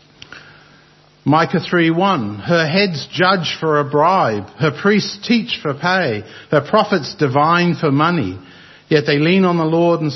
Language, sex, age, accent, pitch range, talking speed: English, male, 50-69, Australian, 140-180 Hz, 150 wpm